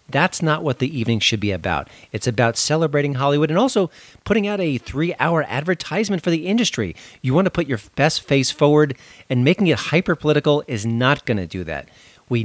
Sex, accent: male, American